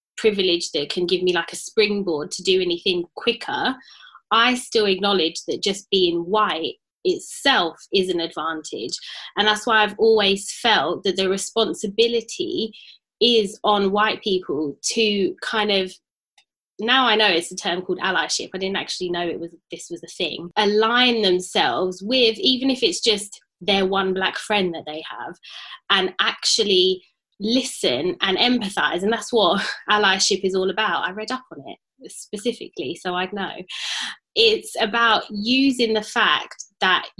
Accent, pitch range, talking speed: British, 185-230 Hz, 160 wpm